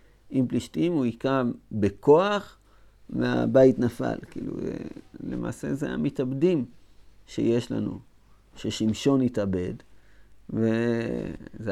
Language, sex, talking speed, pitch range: Hebrew, male, 80 wpm, 95-130 Hz